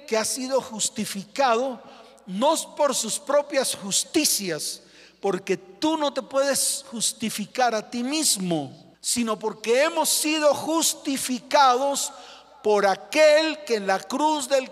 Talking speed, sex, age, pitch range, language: 120 wpm, male, 40-59, 215-295 Hz, Spanish